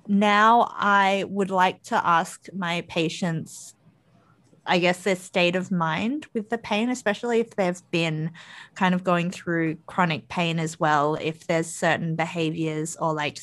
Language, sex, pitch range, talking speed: English, female, 165-195 Hz, 155 wpm